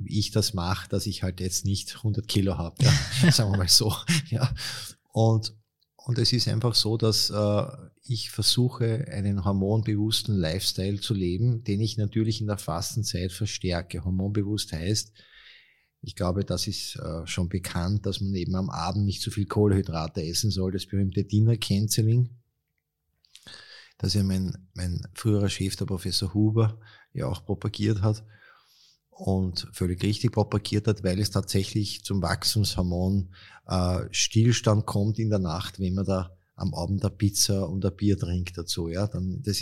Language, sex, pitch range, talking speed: German, male, 95-110 Hz, 160 wpm